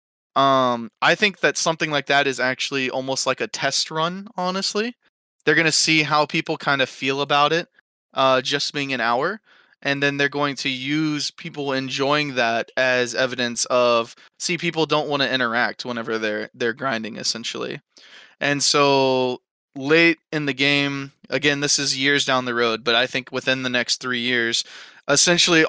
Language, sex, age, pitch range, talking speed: English, male, 20-39, 125-155 Hz, 180 wpm